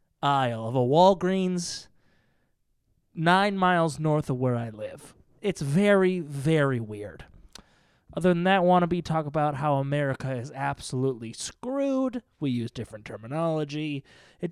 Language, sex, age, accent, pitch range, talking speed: English, male, 20-39, American, 145-190 Hz, 125 wpm